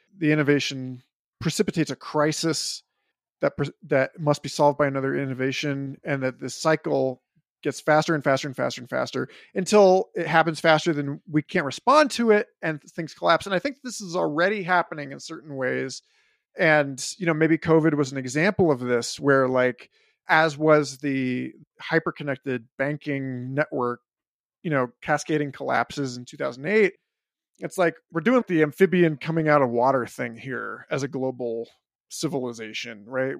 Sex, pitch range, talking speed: male, 135-175 Hz, 160 wpm